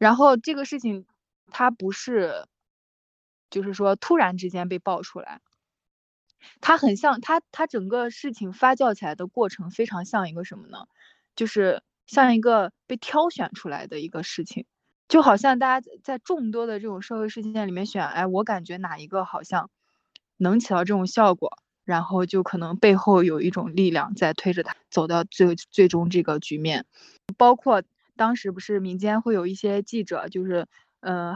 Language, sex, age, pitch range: Chinese, female, 20-39, 180-230 Hz